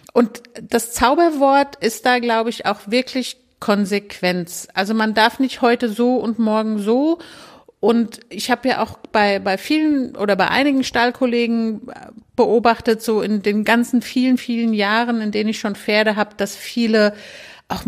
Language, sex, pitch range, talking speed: German, female, 205-255 Hz, 160 wpm